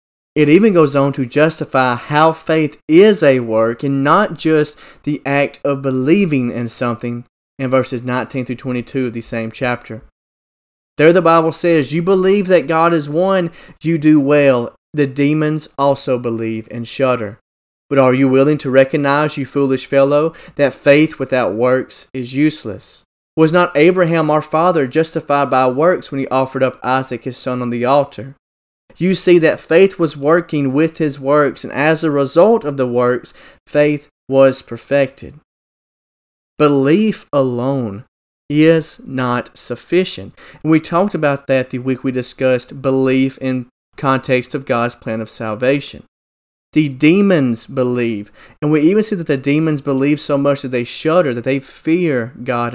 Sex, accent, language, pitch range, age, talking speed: male, American, English, 125-155 Hz, 20-39, 160 wpm